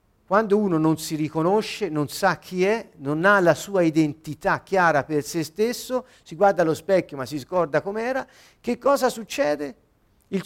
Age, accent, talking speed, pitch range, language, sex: 50-69, native, 170 wpm, 155-235 Hz, Italian, male